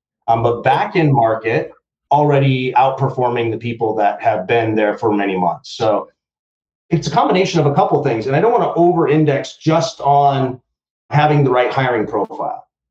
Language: English